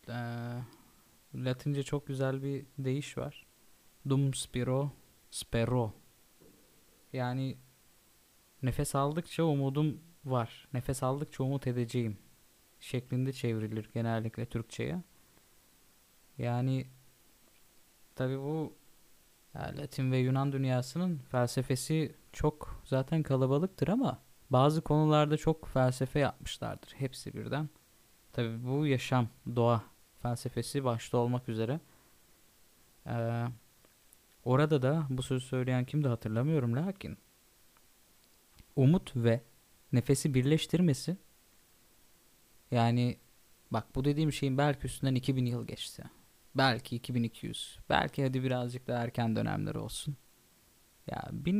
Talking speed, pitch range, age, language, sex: 95 wpm, 120-145 Hz, 20-39, Turkish, male